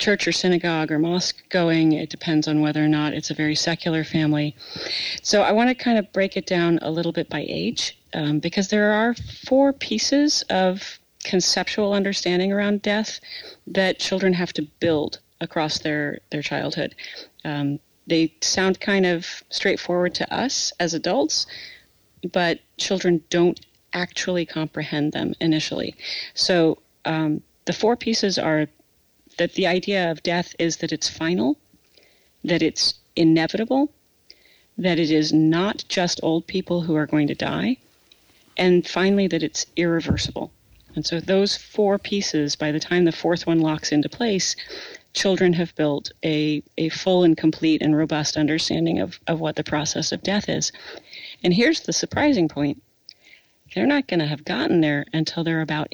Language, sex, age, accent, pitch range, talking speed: English, female, 40-59, American, 155-195 Hz, 160 wpm